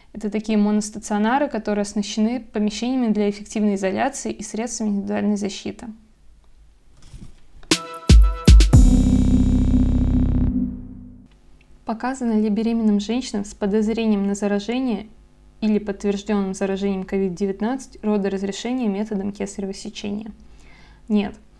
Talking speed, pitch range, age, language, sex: 80 wpm, 195-220 Hz, 20-39, Russian, female